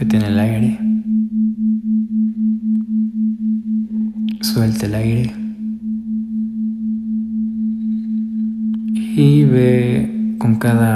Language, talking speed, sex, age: Spanish, 60 wpm, male, 20-39